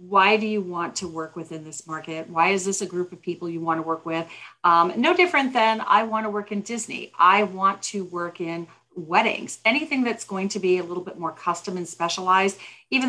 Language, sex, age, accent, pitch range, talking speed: English, female, 40-59, American, 170-210 Hz, 230 wpm